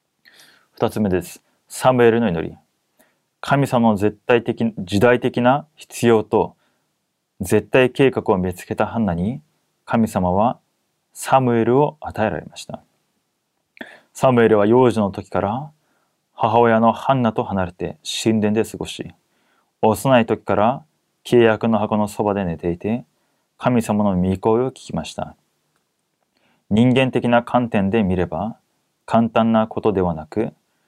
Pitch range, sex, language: 100-120 Hz, male, Korean